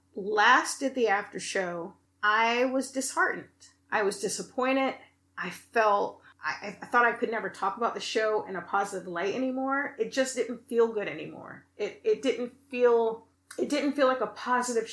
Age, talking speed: 30-49, 175 wpm